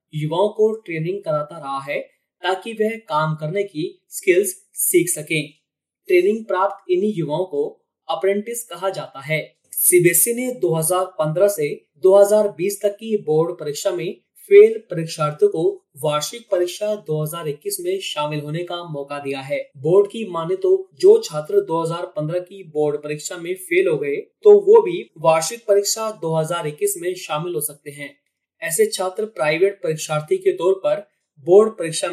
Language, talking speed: Hindi, 150 wpm